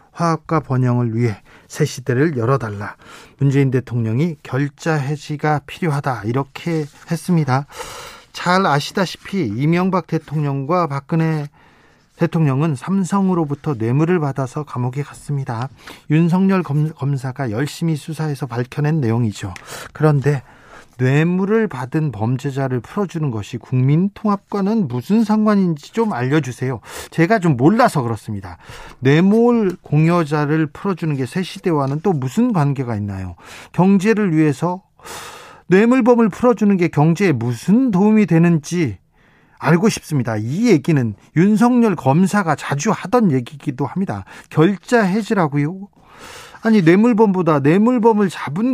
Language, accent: Korean, native